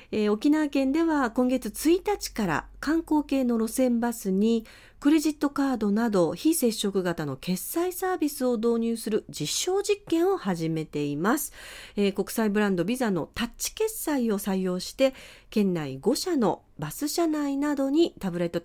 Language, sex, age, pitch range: Japanese, female, 40-59, 175-270 Hz